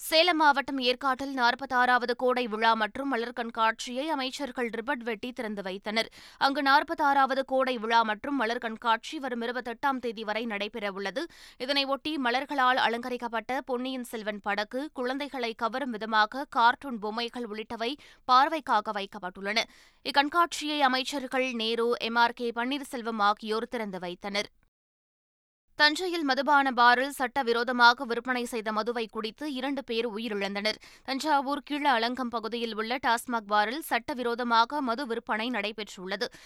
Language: Tamil